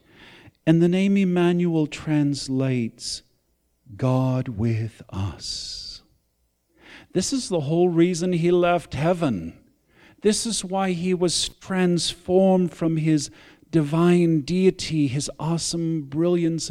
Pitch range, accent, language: 110-155 Hz, American, English